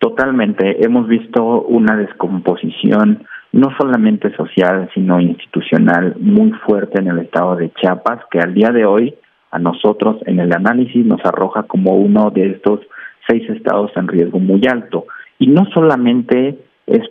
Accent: Mexican